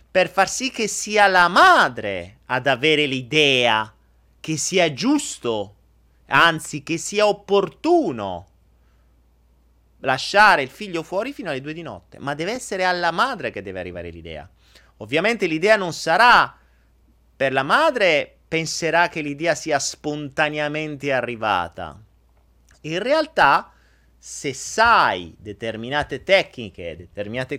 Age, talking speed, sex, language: 30-49, 120 wpm, male, Italian